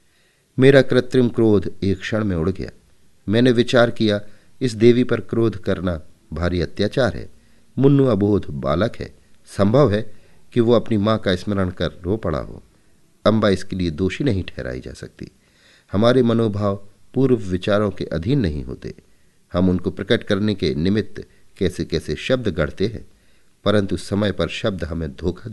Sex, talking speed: male, 160 wpm